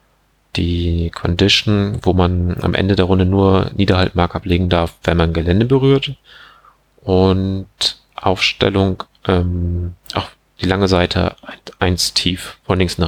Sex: male